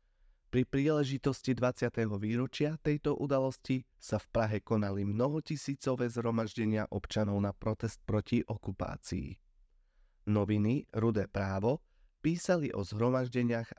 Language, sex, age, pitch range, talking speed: Slovak, male, 30-49, 105-130 Hz, 100 wpm